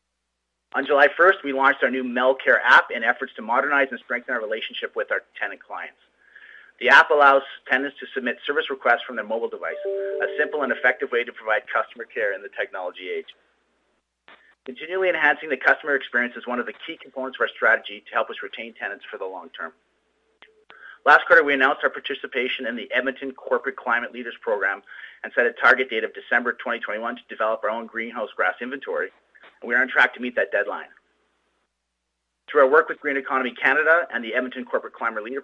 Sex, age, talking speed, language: male, 30-49, 200 wpm, English